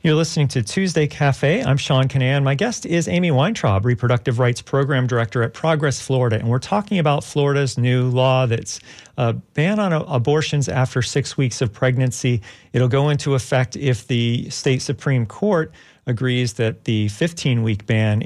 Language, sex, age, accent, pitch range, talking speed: English, male, 40-59, American, 120-145 Hz, 175 wpm